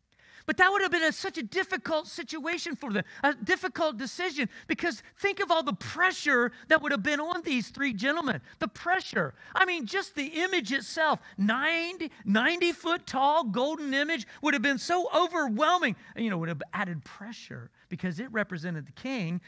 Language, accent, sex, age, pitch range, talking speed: English, American, male, 40-59, 200-315 Hz, 170 wpm